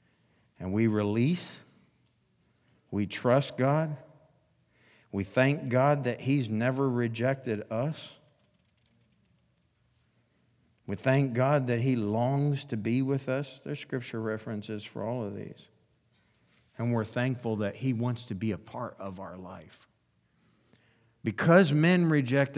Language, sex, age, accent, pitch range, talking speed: English, male, 50-69, American, 105-125 Hz, 125 wpm